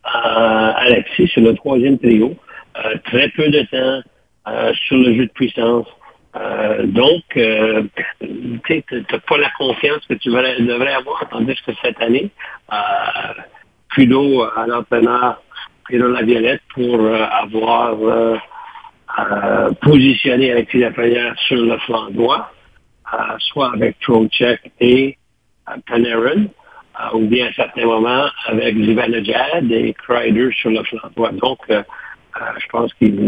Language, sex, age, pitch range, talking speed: French, male, 60-79, 115-130 Hz, 140 wpm